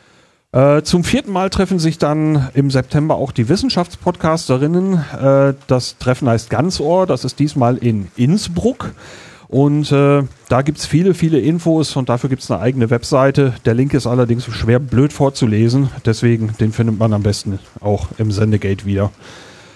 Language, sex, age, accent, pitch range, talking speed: German, male, 40-59, German, 115-155 Hz, 160 wpm